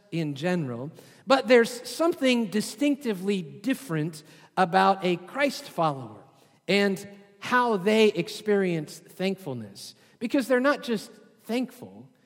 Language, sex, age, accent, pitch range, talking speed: English, male, 40-59, American, 160-210 Hz, 105 wpm